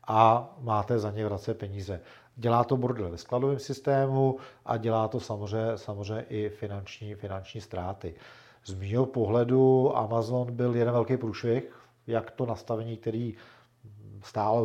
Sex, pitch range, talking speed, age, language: male, 105-115 Hz, 140 wpm, 40-59, Czech